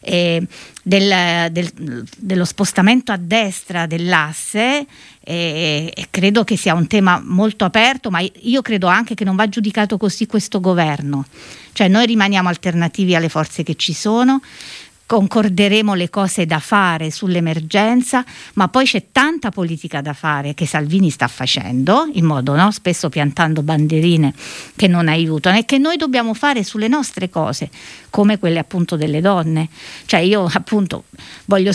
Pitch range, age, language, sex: 170-215 Hz, 50-69, Italian, female